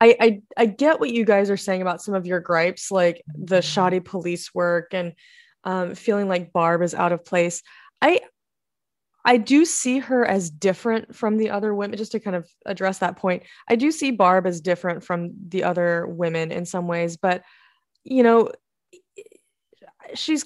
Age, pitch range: 20-39, 175-220 Hz